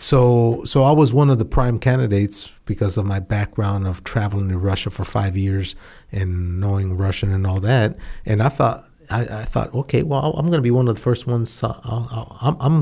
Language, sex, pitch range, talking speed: English, male, 100-125 Hz, 220 wpm